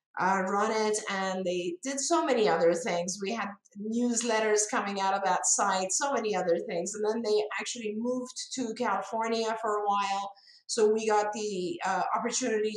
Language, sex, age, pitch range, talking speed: English, female, 50-69, 200-235 Hz, 180 wpm